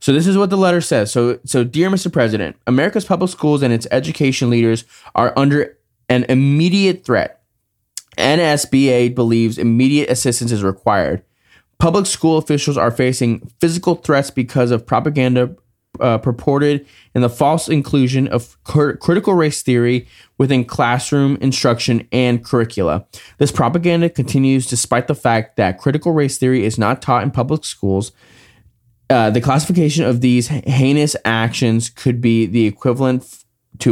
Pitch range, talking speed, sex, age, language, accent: 115-145 Hz, 150 wpm, male, 20-39, English, American